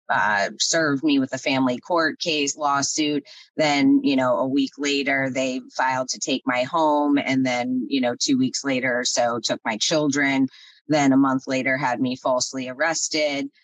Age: 30-49